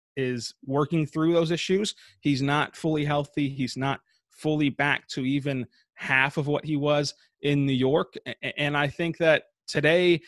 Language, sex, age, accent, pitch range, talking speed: English, male, 20-39, American, 130-155 Hz, 165 wpm